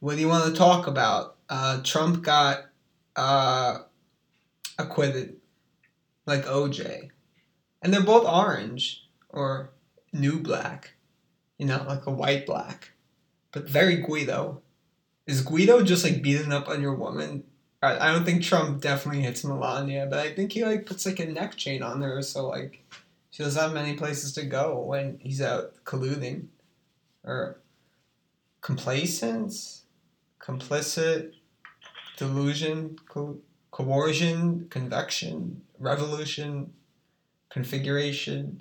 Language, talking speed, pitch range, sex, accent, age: English, 125 wpm, 135-165 Hz, male, American, 20-39